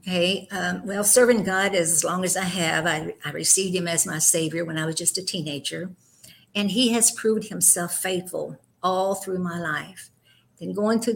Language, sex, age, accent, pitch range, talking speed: English, female, 60-79, American, 170-195 Hz, 190 wpm